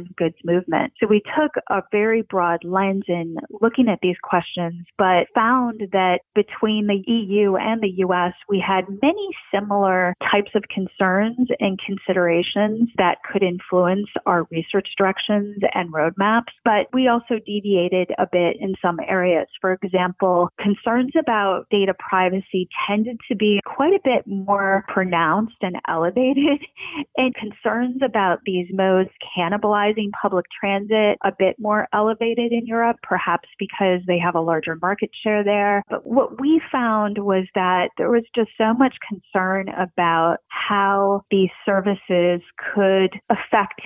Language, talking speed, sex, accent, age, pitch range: English, 145 wpm, female, American, 30-49, 180-215 Hz